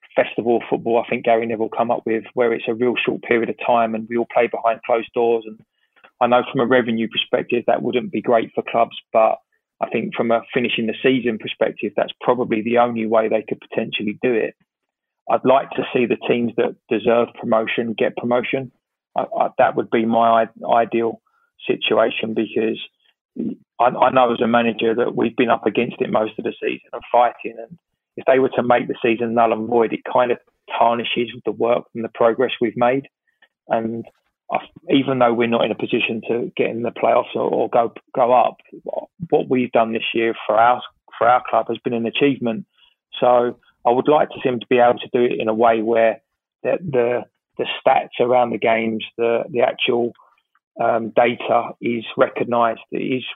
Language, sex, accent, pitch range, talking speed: English, male, British, 115-125 Hz, 200 wpm